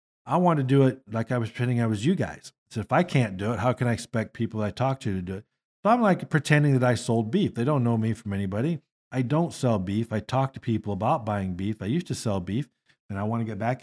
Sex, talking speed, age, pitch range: male, 285 wpm, 50-69, 110-140 Hz